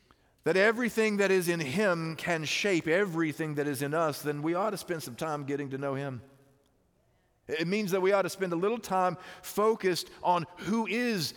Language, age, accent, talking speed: English, 40-59, American, 200 wpm